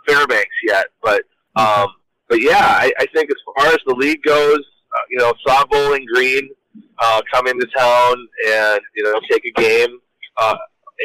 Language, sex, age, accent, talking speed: English, male, 30-49, American, 175 wpm